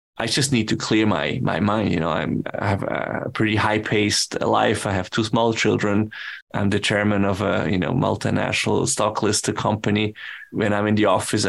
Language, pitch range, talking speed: English, 105-115 Hz, 205 wpm